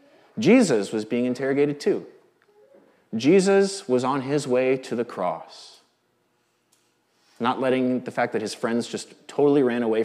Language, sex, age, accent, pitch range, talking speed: English, male, 30-49, American, 105-160 Hz, 145 wpm